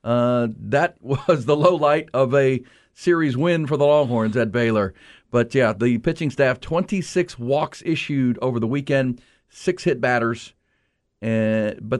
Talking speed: 155 wpm